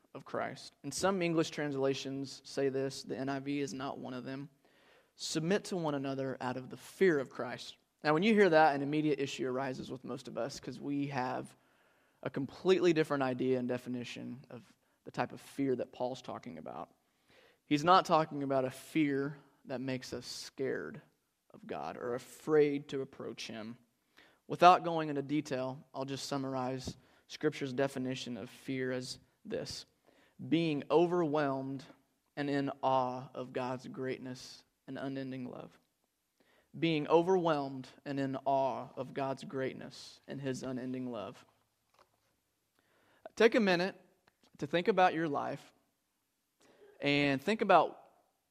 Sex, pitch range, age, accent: male, 130-155 Hz, 20-39, American